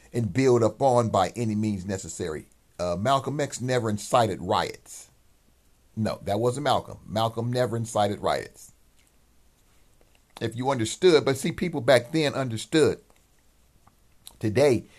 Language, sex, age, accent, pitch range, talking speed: English, male, 50-69, American, 105-140 Hz, 130 wpm